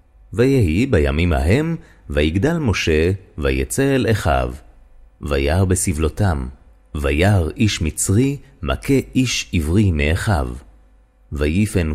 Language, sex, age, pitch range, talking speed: Hebrew, male, 30-49, 75-110 Hz, 90 wpm